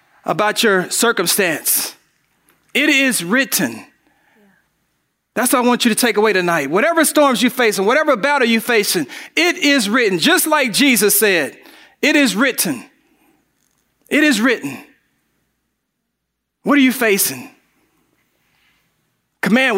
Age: 40-59